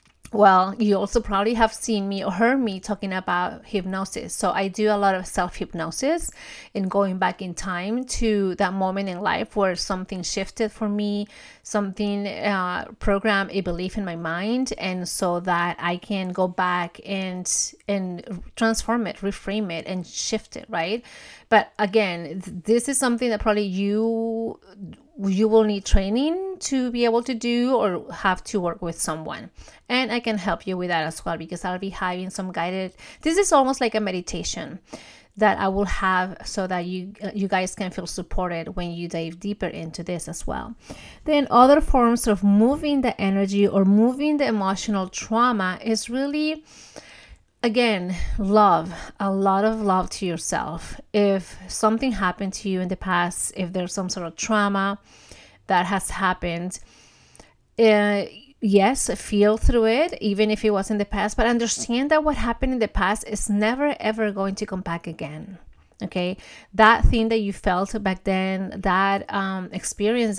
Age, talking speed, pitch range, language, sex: 30-49, 175 wpm, 185-220 Hz, English, female